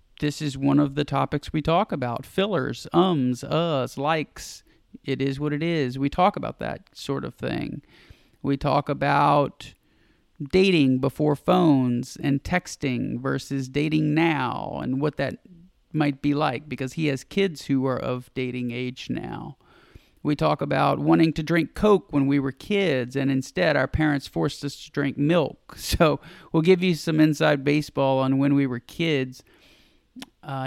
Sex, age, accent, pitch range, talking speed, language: male, 40-59, American, 135-155 Hz, 165 wpm, English